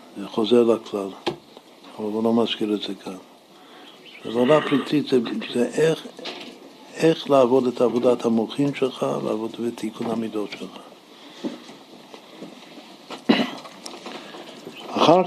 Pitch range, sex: 110-150 Hz, male